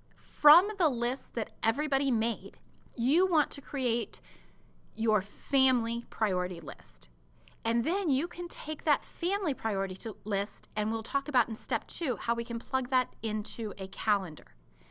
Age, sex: 30-49, female